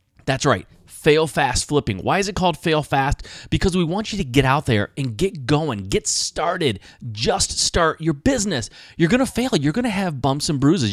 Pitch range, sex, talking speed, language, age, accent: 120-165 Hz, male, 205 wpm, English, 30-49, American